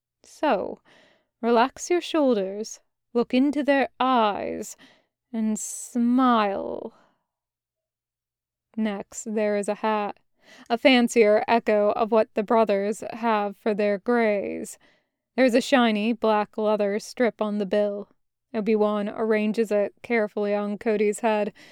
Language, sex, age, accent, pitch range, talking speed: English, female, 20-39, American, 210-240 Hz, 120 wpm